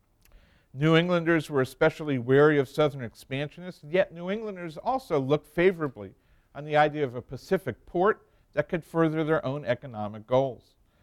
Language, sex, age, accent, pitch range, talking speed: English, male, 50-69, American, 120-160 Hz, 150 wpm